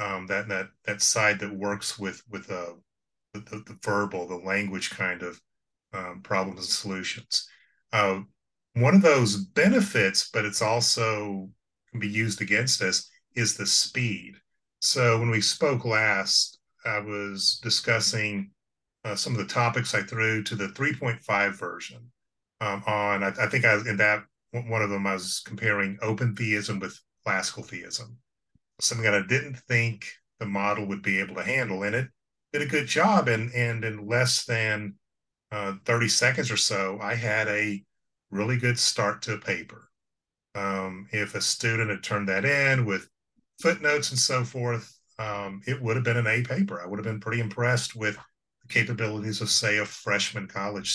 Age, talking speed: 30-49, 175 wpm